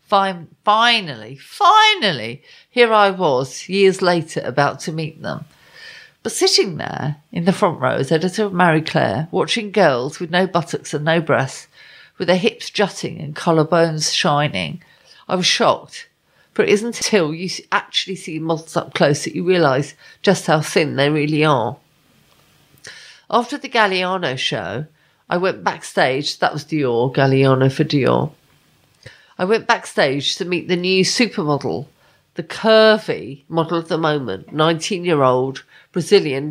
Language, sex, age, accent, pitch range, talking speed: English, female, 50-69, British, 150-195 Hz, 145 wpm